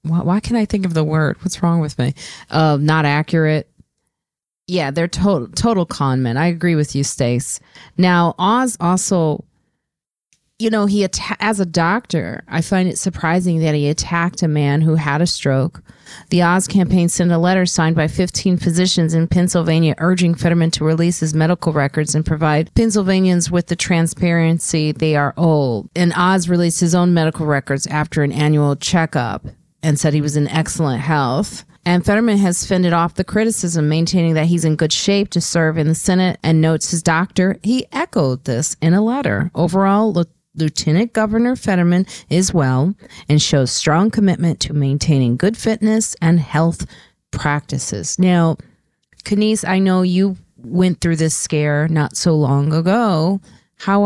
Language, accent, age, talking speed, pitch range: English, American, 40-59, 170 wpm, 155-185 Hz